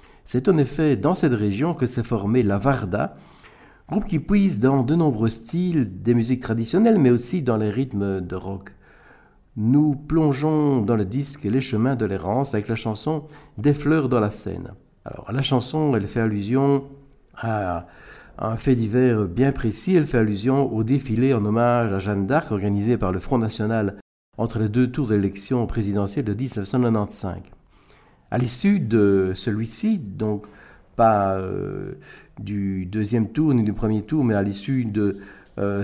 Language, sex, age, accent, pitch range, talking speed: French, male, 50-69, French, 105-140 Hz, 170 wpm